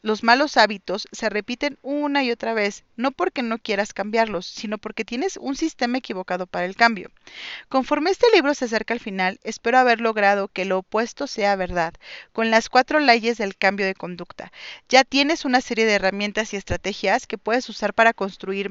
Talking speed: 190 wpm